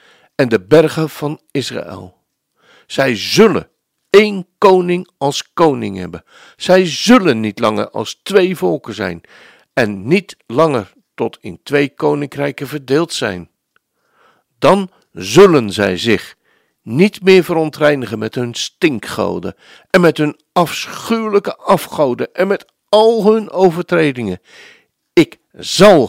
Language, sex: Dutch, male